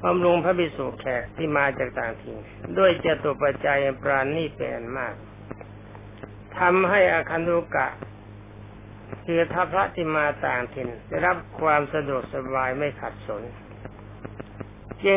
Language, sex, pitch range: Thai, male, 105-160 Hz